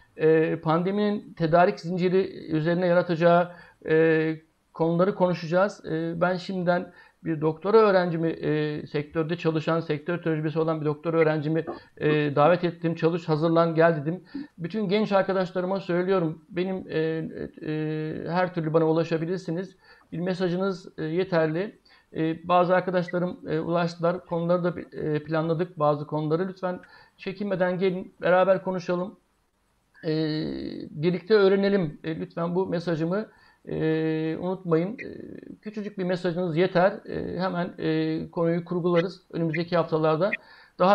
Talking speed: 100 wpm